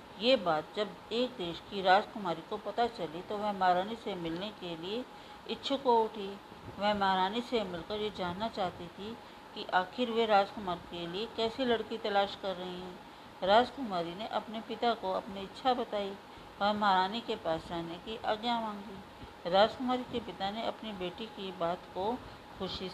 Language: Hindi